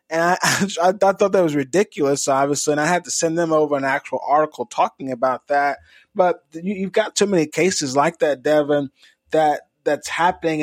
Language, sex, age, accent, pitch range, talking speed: English, male, 20-39, American, 140-165 Hz, 200 wpm